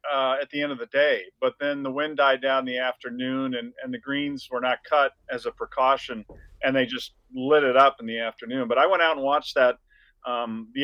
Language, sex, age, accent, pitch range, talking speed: English, male, 40-59, American, 125-150 Hz, 245 wpm